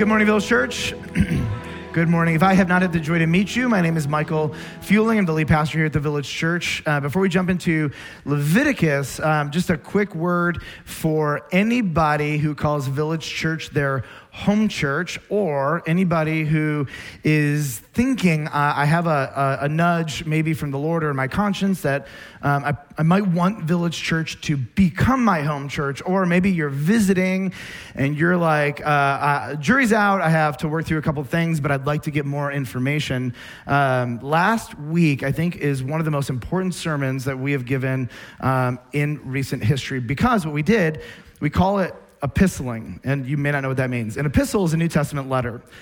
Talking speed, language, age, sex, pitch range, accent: 200 wpm, English, 30-49, male, 140-175 Hz, American